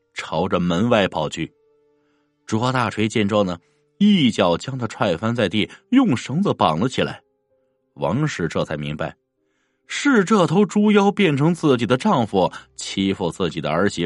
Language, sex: Chinese, male